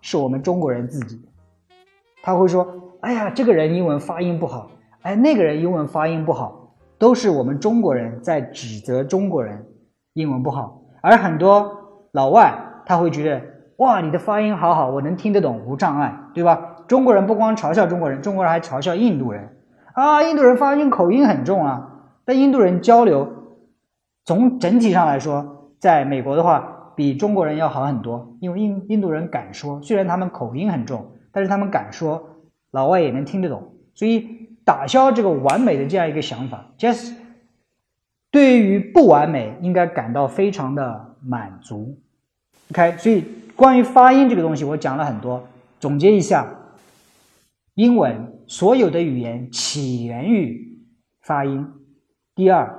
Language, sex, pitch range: Chinese, male, 135-210 Hz